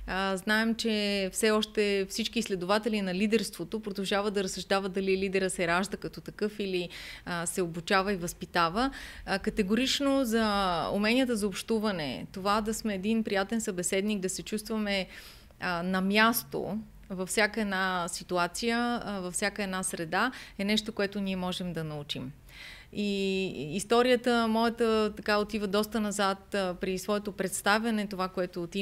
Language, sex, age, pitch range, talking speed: Bulgarian, female, 30-49, 185-215 Hz, 140 wpm